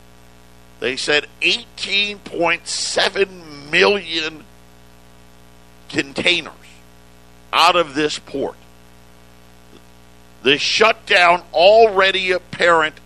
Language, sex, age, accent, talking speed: English, male, 50-69, American, 60 wpm